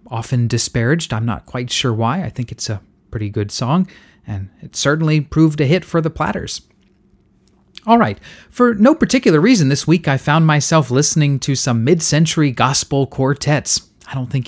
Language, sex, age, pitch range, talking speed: English, male, 30-49, 115-160 Hz, 180 wpm